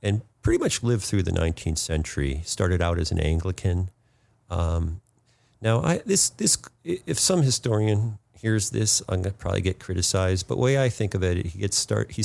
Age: 50-69